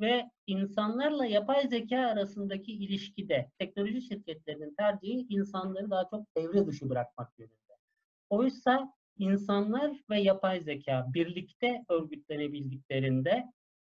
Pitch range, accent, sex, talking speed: 165-230 Hz, native, male, 100 wpm